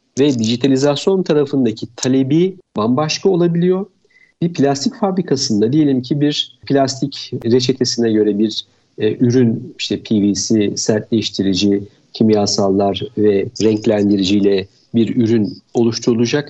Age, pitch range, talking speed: 50-69, 110-150 Hz, 100 wpm